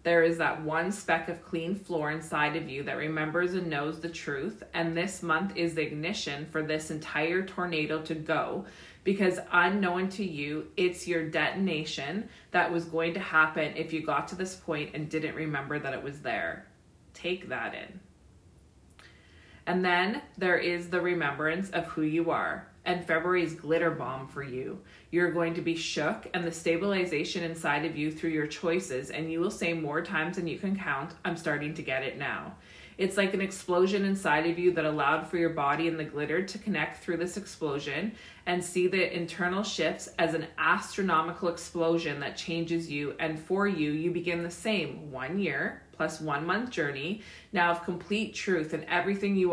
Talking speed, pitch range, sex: 190 wpm, 155-180 Hz, female